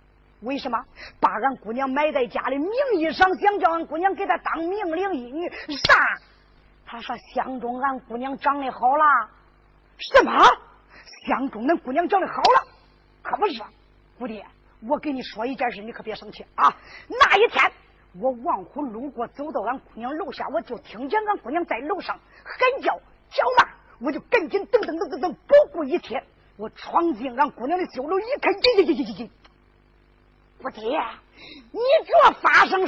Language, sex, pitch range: Chinese, female, 270-400 Hz